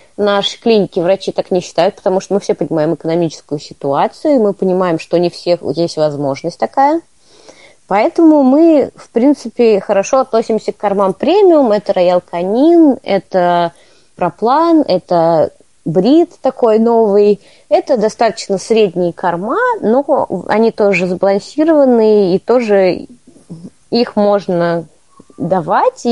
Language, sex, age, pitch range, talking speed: Russian, female, 20-39, 190-260 Hz, 115 wpm